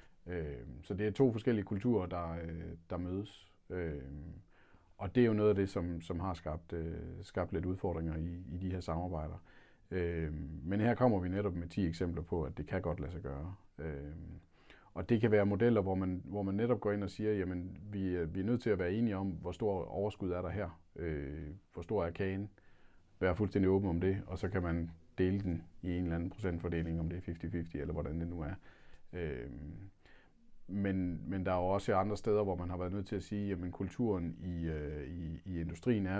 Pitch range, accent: 85-100 Hz, native